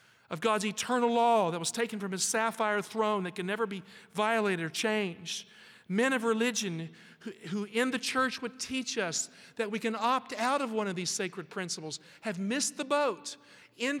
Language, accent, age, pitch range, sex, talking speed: English, American, 50-69, 175-220 Hz, male, 195 wpm